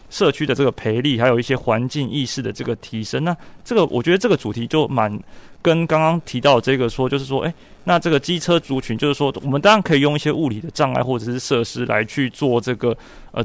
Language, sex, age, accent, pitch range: Chinese, male, 30-49, native, 115-140 Hz